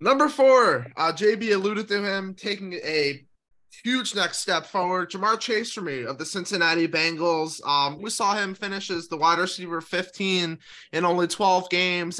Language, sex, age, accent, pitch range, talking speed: English, male, 20-39, American, 145-185 Hz, 170 wpm